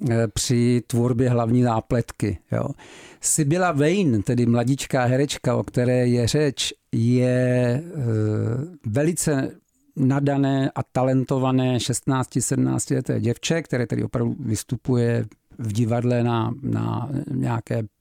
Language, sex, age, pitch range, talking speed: Czech, male, 50-69, 125-155 Hz, 100 wpm